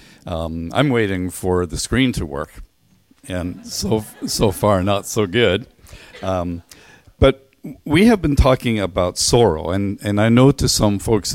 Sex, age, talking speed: male, 50-69, 160 wpm